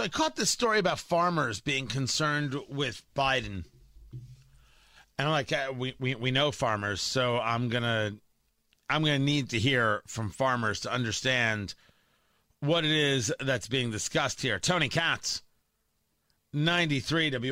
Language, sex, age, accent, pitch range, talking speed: English, male, 40-59, American, 125-185 Hz, 145 wpm